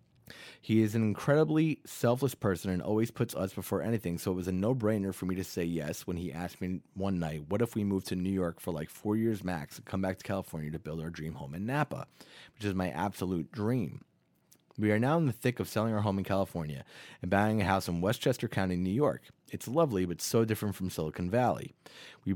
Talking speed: 235 wpm